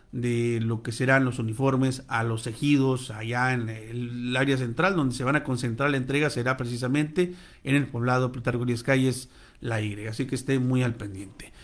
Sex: male